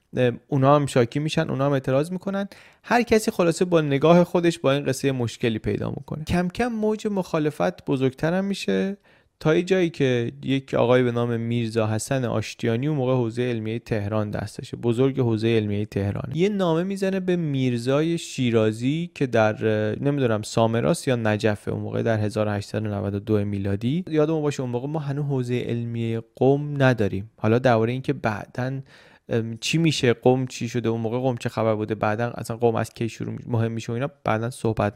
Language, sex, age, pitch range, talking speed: Persian, male, 30-49, 110-145 Hz, 170 wpm